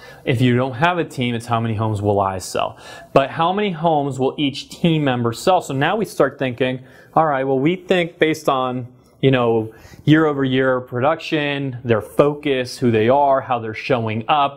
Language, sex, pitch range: English, male, 125-165 Hz